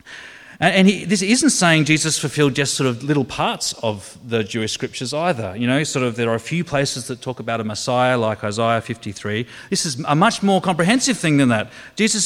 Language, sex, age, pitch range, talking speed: English, male, 30-49, 125-200 Hz, 210 wpm